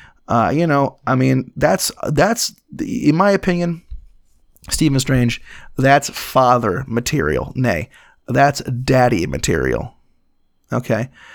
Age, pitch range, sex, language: 30-49, 125-150 Hz, male, English